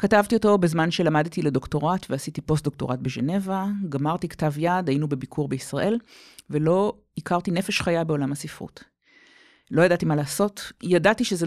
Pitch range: 150-205 Hz